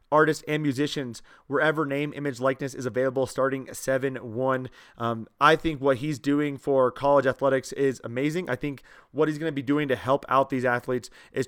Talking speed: 185 wpm